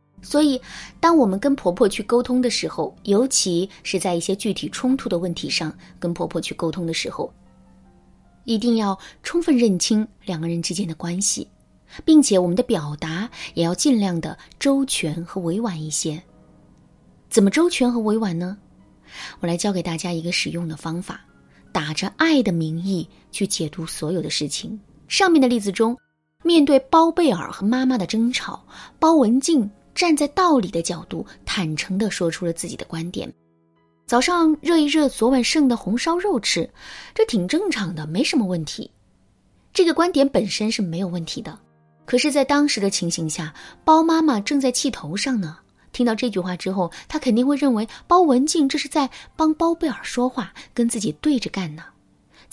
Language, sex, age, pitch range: Chinese, female, 20-39, 175-280 Hz